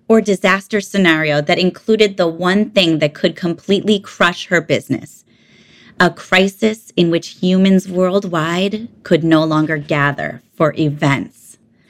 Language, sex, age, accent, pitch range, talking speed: English, female, 30-49, American, 165-225 Hz, 130 wpm